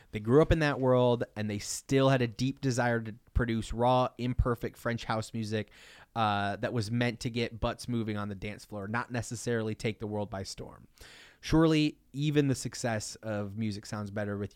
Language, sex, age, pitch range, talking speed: English, male, 30-49, 110-130 Hz, 200 wpm